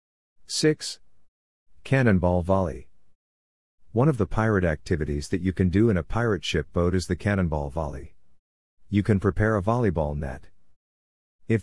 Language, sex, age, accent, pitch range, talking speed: English, male, 50-69, American, 85-105 Hz, 145 wpm